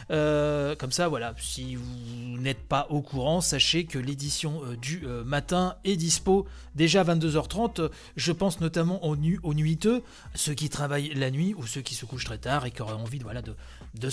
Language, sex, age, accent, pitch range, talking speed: French, male, 30-49, French, 130-190 Hz, 190 wpm